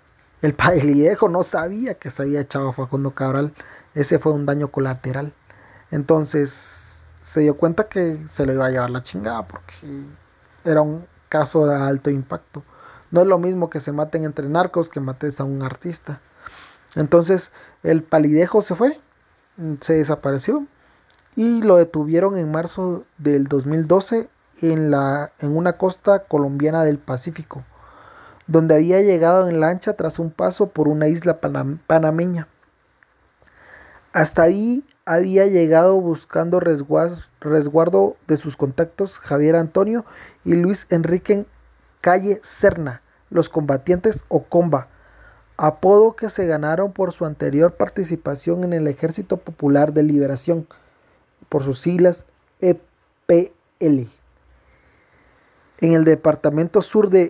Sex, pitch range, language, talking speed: male, 145-180 Hz, Spanish, 130 wpm